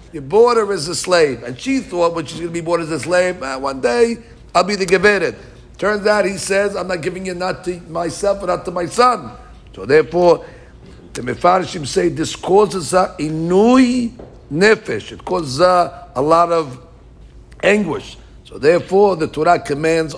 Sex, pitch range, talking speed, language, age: male, 140-185 Hz, 180 wpm, English, 60-79